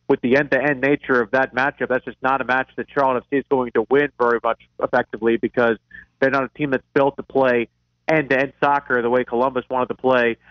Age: 40-59